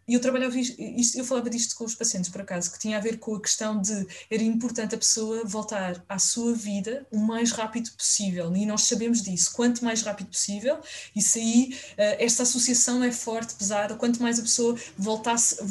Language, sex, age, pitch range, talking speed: Portuguese, female, 20-39, 205-240 Hz, 185 wpm